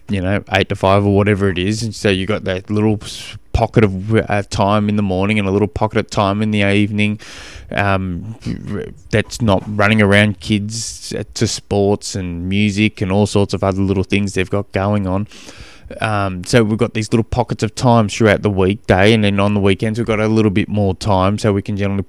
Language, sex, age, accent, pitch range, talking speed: English, male, 20-39, Australian, 95-115 Hz, 215 wpm